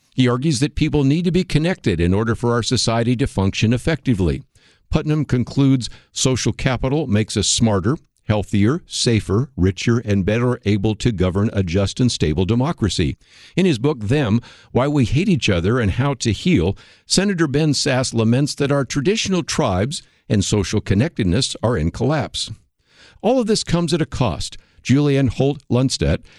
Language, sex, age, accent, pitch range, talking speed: English, male, 60-79, American, 105-145 Hz, 165 wpm